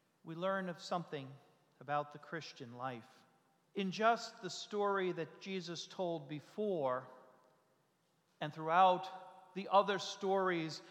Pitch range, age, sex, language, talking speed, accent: 165-205 Hz, 40-59, male, English, 115 wpm, American